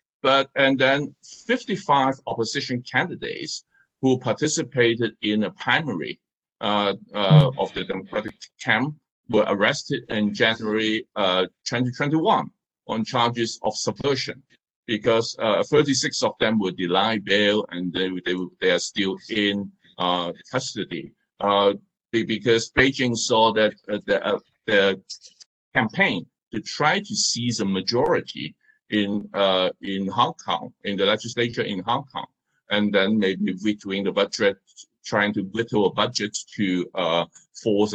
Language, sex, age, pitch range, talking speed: English, male, 50-69, 105-135 Hz, 135 wpm